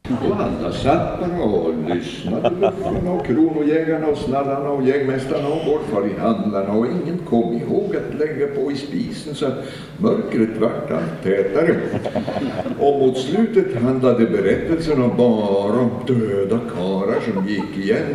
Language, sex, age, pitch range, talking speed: Swedish, male, 60-79, 120-205 Hz, 140 wpm